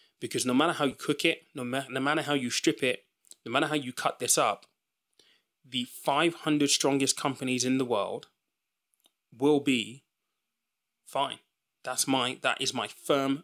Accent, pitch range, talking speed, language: British, 125-155 Hz, 175 wpm, English